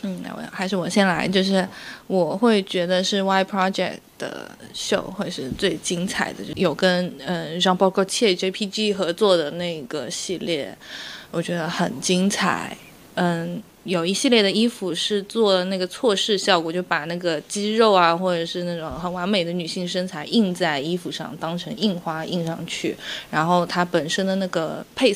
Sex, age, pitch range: female, 20-39, 170-205 Hz